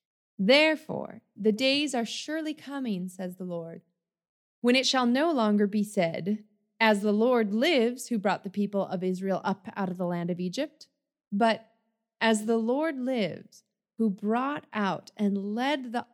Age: 30-49